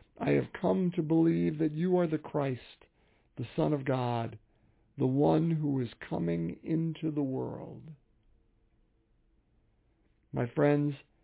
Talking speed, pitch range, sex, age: 130 wpm, 115-150 Hz, male, 50-69